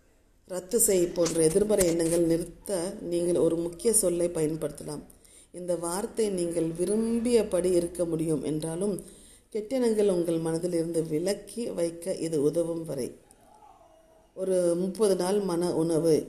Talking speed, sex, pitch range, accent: 115 wpm, female, 165-195 Hz, native